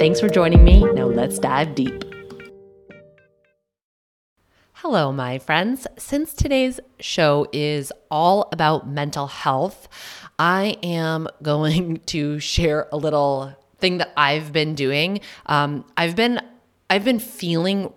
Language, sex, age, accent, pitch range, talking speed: English, female, 20-39, American, 140-185 Hz, 125 wpm